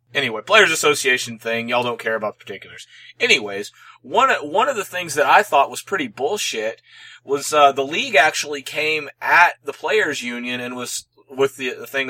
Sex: male